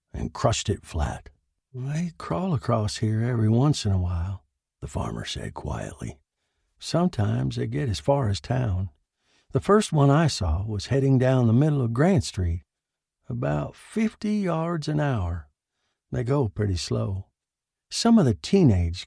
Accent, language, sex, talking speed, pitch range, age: American, English, male, 155 wpm, 90-130 Hz, 60-79